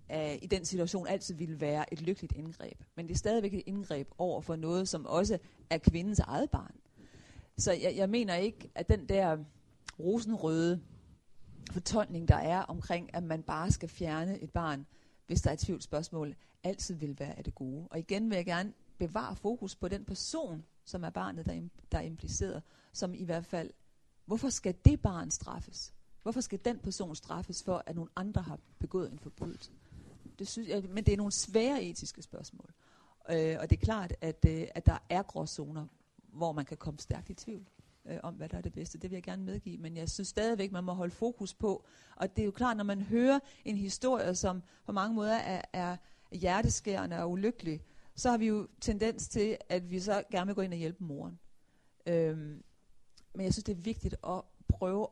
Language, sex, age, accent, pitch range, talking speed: Danish, female, 40-59, native, 160-200 Hz, 205 wpm